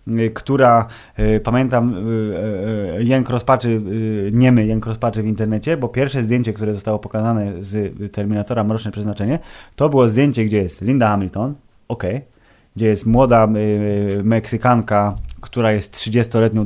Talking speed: 145 wpm